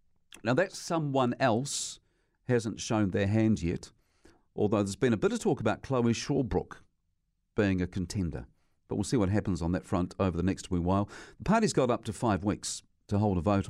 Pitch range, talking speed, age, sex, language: 95-115 Hz, 200 wpm, 50-69, male, English